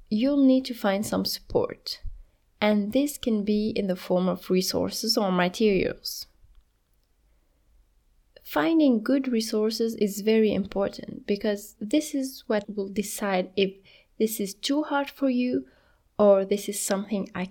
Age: 20-39